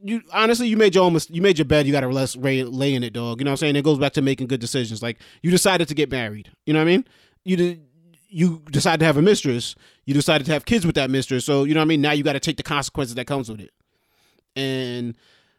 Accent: American